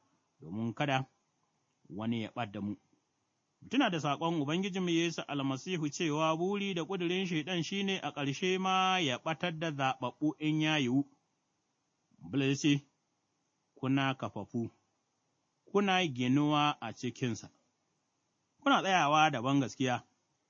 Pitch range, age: 130-175 Hz, 30-49